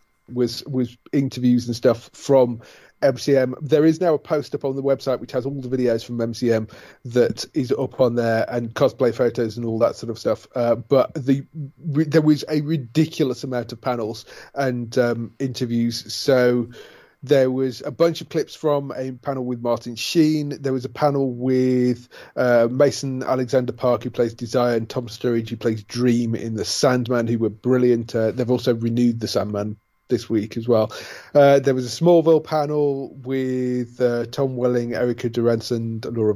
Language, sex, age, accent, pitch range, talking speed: English, male, 30-49, British, 115-140 Hz, 185 wpm